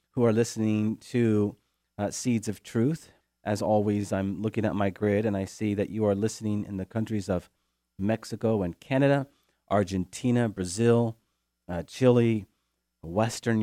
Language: English